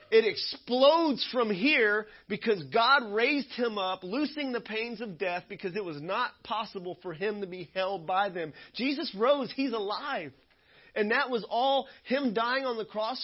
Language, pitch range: English, 160-220 Hz